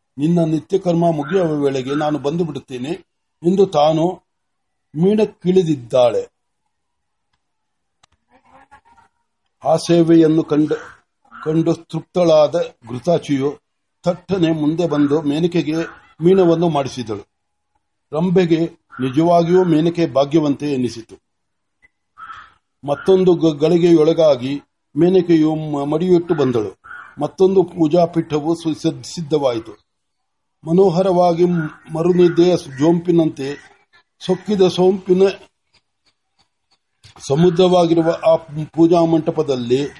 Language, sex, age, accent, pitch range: Marathi, male, 60-79, native, 150-180 Hz